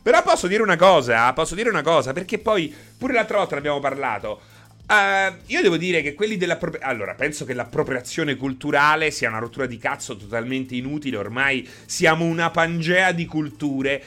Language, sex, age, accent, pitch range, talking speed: Italian, male, 30-49, native, 125-175 Hz, 170 wpm